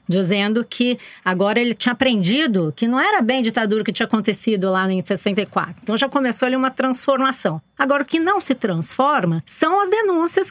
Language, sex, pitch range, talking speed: Portuguese, female, 185-250 Hz, 190 wpm